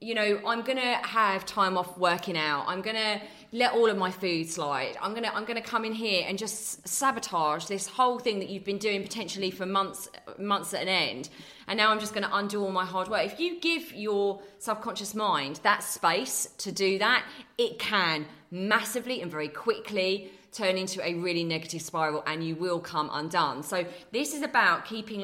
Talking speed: 200 wpm